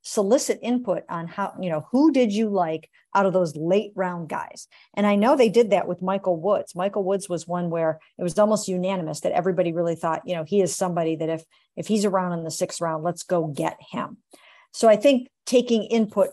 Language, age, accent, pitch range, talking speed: English, 50-69, American, 175-210 Hz, 225 wpm